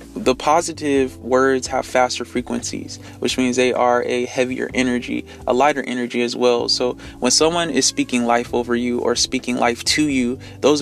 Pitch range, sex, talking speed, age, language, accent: 120-130 Hz, male, 175 wpm, 20-39, English, American